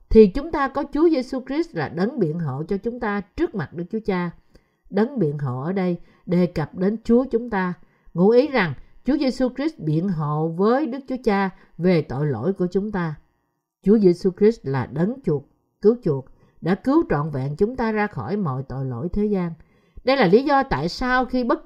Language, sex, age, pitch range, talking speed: Vietnamese, female, 50-69, 160-235 Hz, 215 wpm